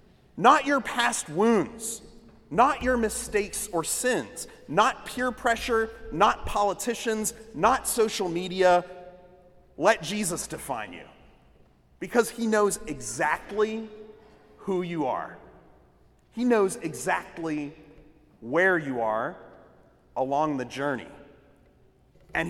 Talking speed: 100 wpm